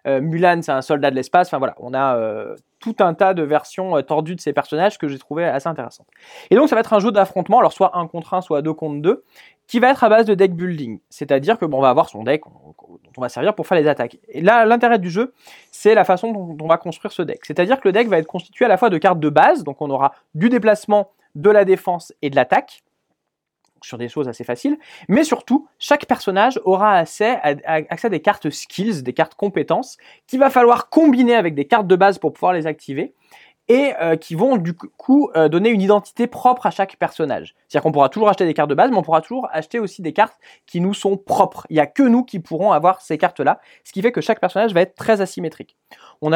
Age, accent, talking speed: 20-39, French, 255 wpm